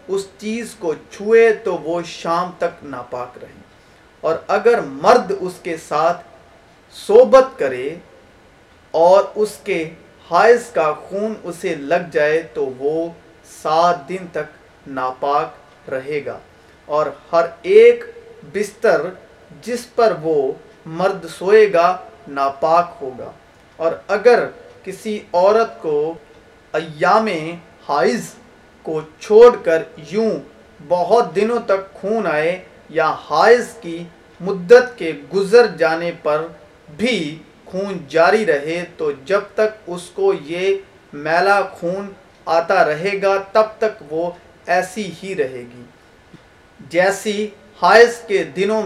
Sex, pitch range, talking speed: male, 160-220 Hz, 120 wpm